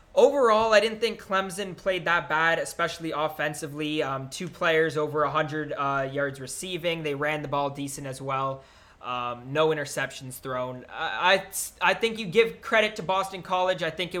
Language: English